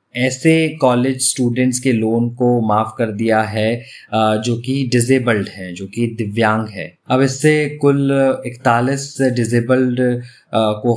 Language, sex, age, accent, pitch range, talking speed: Hindi, male, 20-39, native, 110-125 Hz, 130 wpm